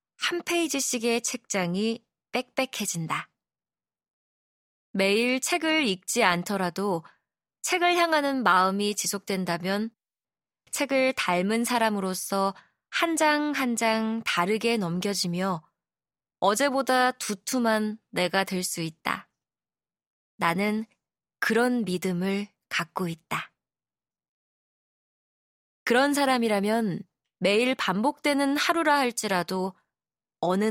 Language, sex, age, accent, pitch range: Korean, female, 20-39, native, 185-250 Hz